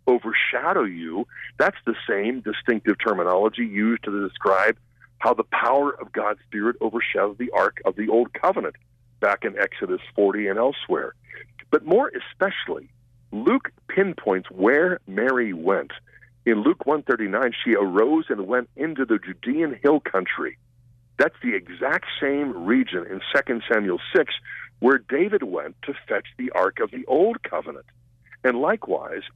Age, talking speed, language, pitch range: 50-69, 145 wpm, English, 115-160 Hz